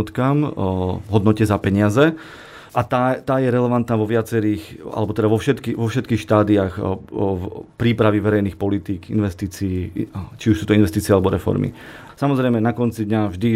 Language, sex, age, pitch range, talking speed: Slovak, male, 30-49, 105-115 Hz, 155 wpm